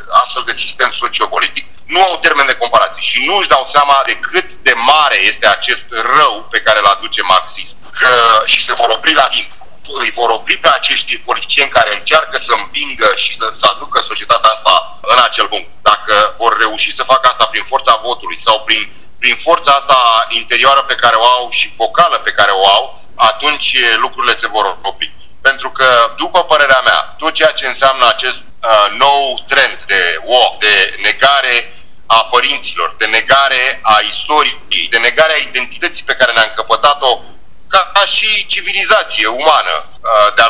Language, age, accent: Romanian, 30-49, native